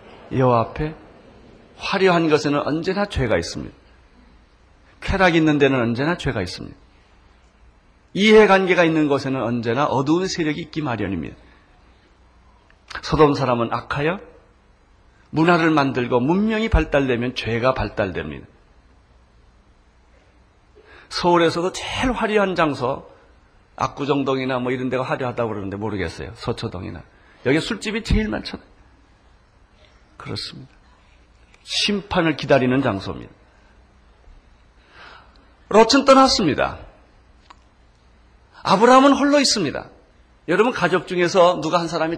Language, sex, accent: Korean, male, native